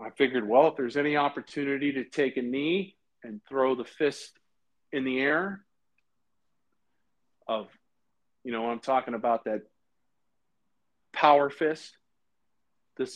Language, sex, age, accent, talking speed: English, male, 50-69, American, 130 wpm